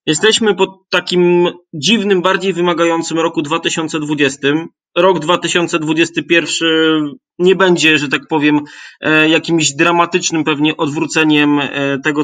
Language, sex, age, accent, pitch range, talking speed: Polish, male, 20-39, native, 150-175 Hz, 100 wpm